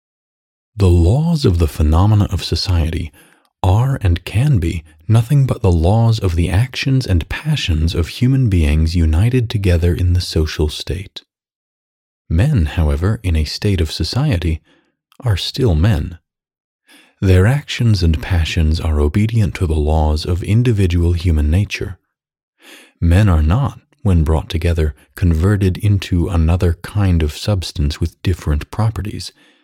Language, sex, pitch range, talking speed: English, male, 80-105 Hz, 135 wpm